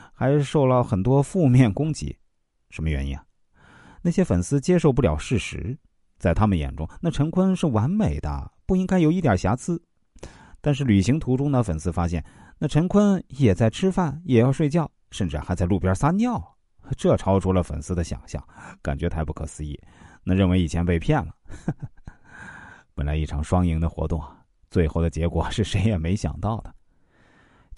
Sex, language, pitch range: male, Chinese, 85-130 Hz